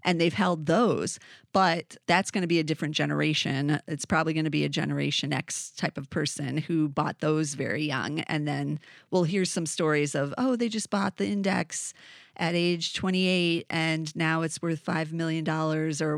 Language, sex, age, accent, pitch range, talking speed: English, female, 30-49, American, 155-195 Hz, 190 wpm